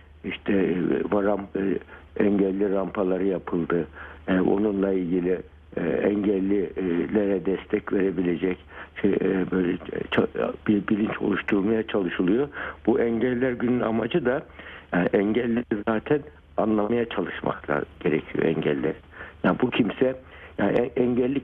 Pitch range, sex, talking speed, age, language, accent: 95-120 Hz, male, 95 wpm, 60-79, Turkish, native